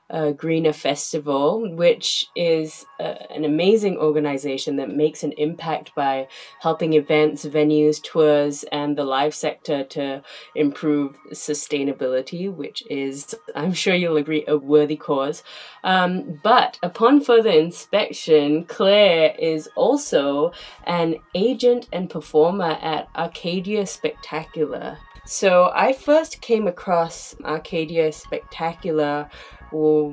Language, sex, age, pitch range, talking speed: English, female, 20-39, 150-200 Hz, 115 wpm